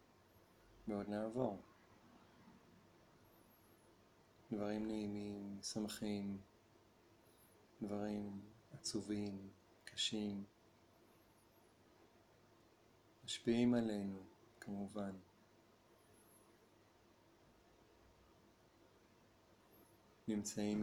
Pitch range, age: 100-110 Hz, 40-59